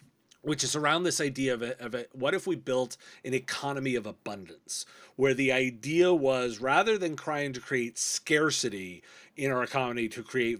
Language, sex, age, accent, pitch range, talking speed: English, male, 30-49, American, 125-165 Hz, 180 wpm